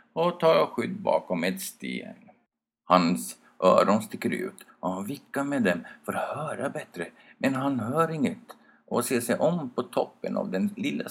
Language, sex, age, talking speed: Swedish, male, 50-69, 175 wpm